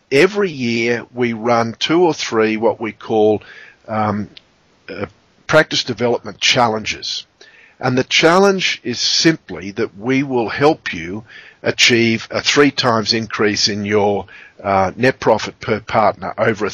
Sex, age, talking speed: male, 50-69, 140 wpm